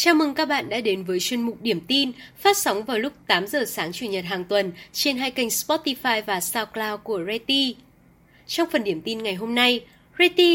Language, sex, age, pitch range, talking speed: Vietnamese, female, 20-39, 195-280 Hz, 215 wpm